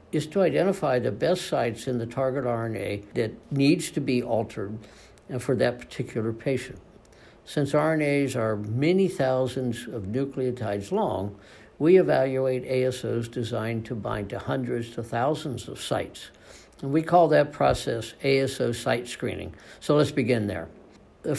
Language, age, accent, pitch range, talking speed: English, 60-79, American, 110-140 Hz, 145 wpm